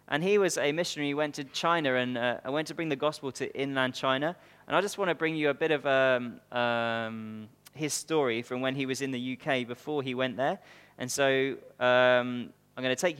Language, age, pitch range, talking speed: English, 20-39, 125-155 Hz, 230 wpm